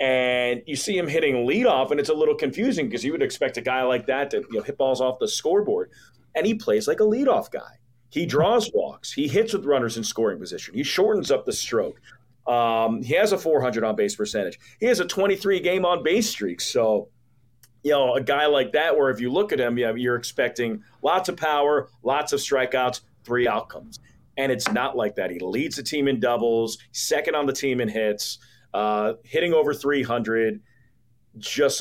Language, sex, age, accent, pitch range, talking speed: English, male, 40-59, American, 120-150 Hz, 205 wpm